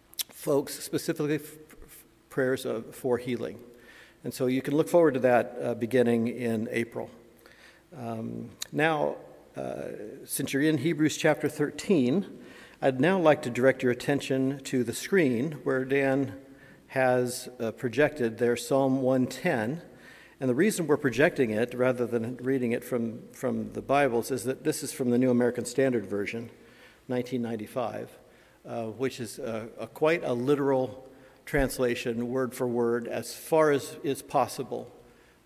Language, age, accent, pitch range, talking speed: English, 50-69, American, 120-140 Hz, 145 wpm